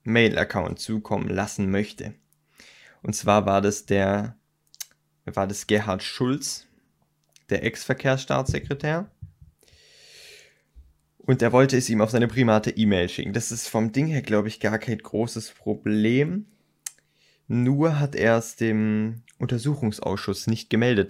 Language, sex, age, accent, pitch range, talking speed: German, male, 20-39, German, 105-120 Hz, 125 wpm